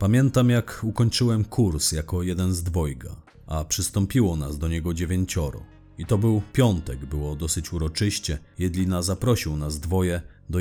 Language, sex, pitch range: Polish, male, 80-100 Hz